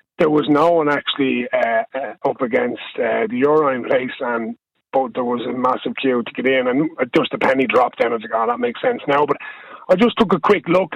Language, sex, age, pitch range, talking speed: English, male, 30-49, 145-190 Hz, 240 wpm